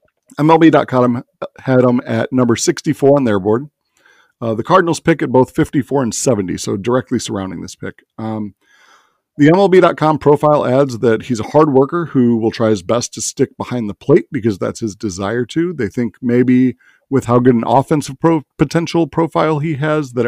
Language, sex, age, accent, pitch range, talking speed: English, male, 40-59, American, 115-145 Hz, 180 wpm